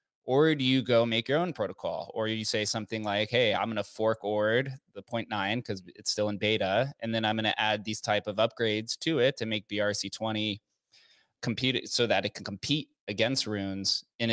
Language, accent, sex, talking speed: English, American, male, 220 wpm